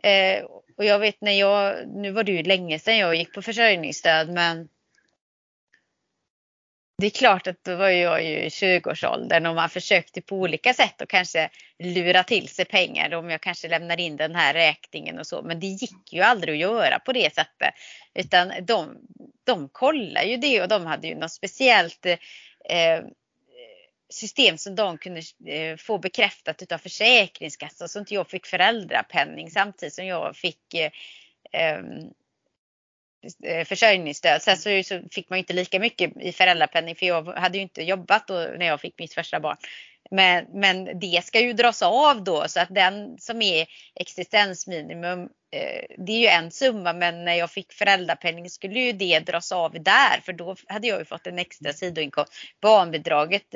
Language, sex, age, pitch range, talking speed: Swedish, female, 30-49, 170-210 Hz, 170 wpm